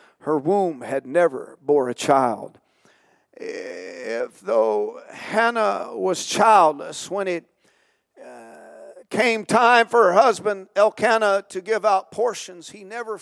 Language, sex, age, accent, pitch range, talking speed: English, male, 50-69, American, 190-240 Hz, 125 wpm